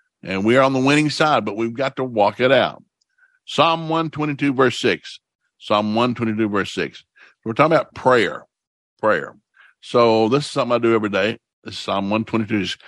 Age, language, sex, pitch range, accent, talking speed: 60-79, English, male, 105-125 Hz, American, 210 wpm